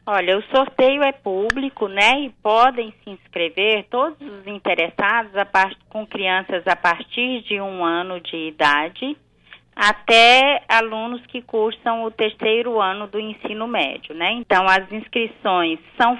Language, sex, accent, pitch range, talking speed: Portuguese, female, Brazilian, 180-235 Hz, 145 wpm